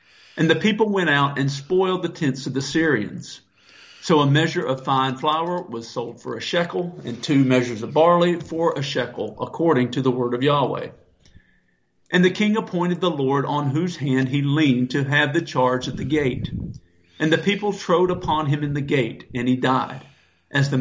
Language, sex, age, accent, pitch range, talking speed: English, male, 50-69, American, 125-160 Hz, 200 wpm